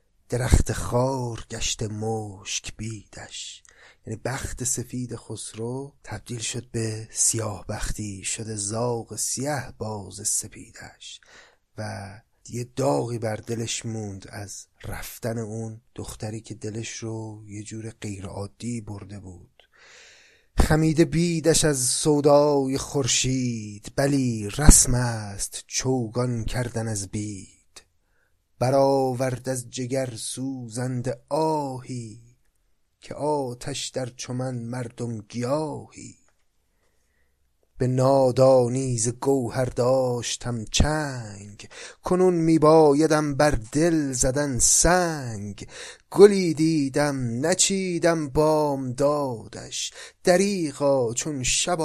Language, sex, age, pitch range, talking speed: Persian, male, 30-49, 110-140 Hz, 95 wpm